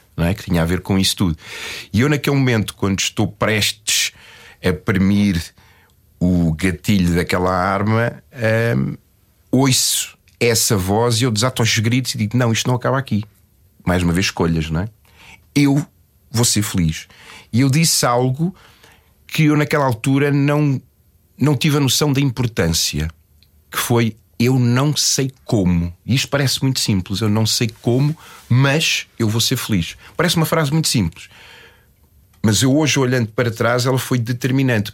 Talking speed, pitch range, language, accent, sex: 165 wpm, 95-130 Hz, Portuguese, Belgian, male